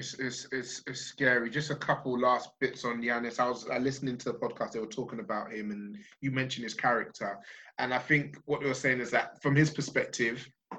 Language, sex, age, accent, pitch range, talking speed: English, male, 20-39, British, 130-160 Hz, 220 wpm